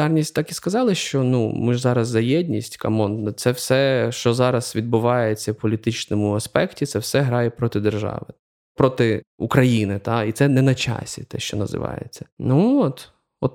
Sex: male